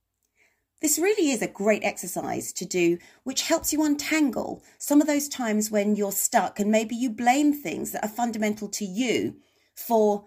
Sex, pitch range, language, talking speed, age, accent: female, 180-260 Hz, English, 175 wpm, 40-59, British